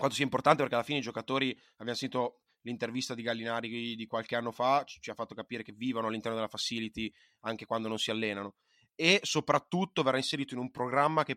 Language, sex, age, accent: Italian, male, 20-39, native